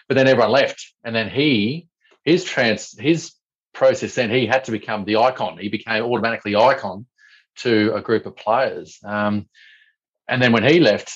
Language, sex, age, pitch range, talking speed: English, male, 40-59, 105-140 Hz, 175 wpm